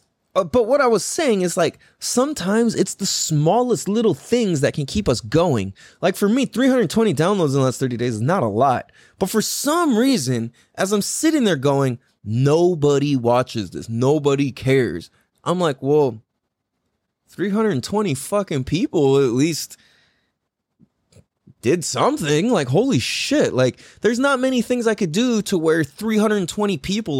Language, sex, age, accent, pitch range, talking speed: English, male, 20-39, American, 140-215 Hz, 160 wpm